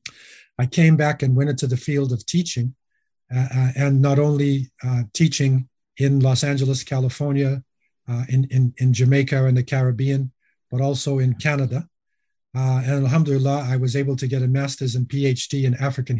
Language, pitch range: English, 130-155 Hz